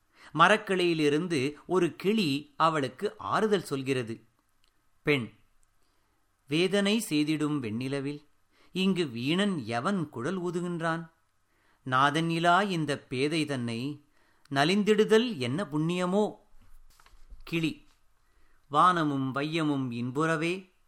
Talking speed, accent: 75 wpm, native